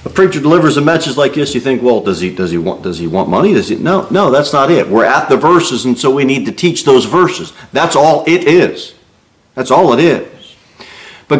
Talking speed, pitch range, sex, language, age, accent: 245 wpm, 125-190 Hz, male, English, 40-59, American